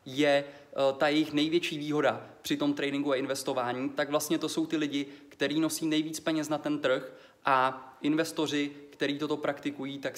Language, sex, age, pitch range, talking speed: Czech, male, 20-39, 135-155 Hz, 170 wpm